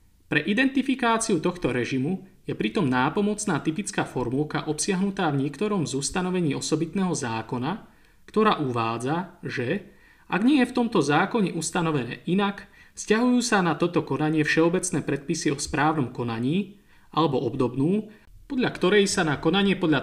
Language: Slovak